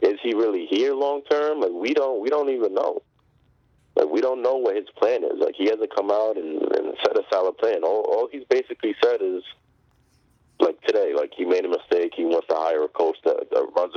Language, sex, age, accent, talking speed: English, male, 30-49, American, 230 wpm